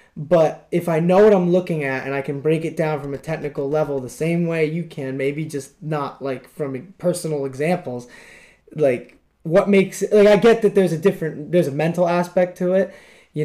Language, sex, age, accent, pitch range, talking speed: English, male, 20-39, American, 135-175 Hz, 210 wpm